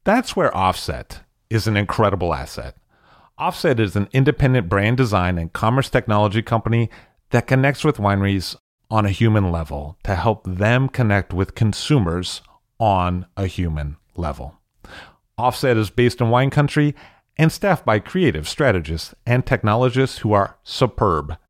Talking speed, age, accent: 140 wpm, 40-59, American